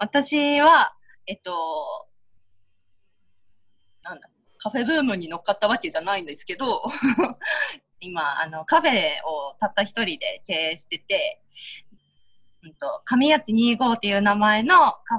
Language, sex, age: Japanese, female, 20-39